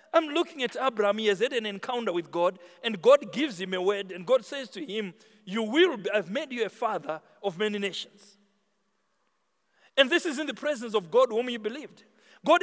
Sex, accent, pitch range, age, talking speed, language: male, South African, 205-290 Hz, 50-69, 215 wpm, English